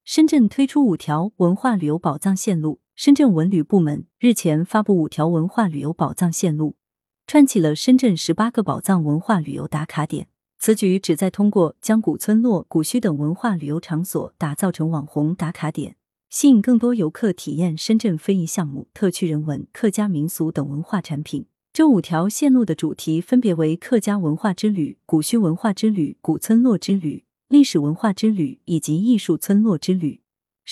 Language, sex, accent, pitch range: Chinese, female, native, 160-225 Hz